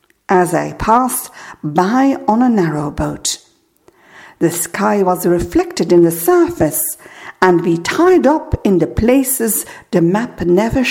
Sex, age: female, 60-79